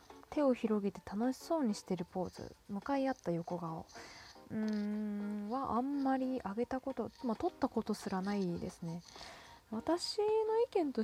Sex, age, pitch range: female, 20-39, 200-290 Hz